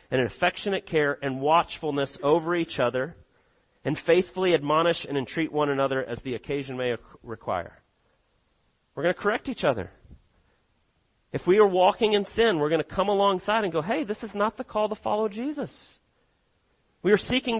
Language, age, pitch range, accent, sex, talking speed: English, 40-59, 125-205 Hz, American, male, 175 wpm